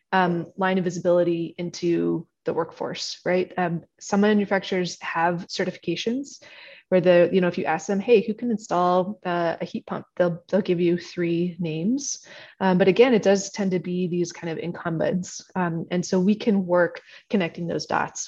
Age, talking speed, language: 20-39, 185 wpm, English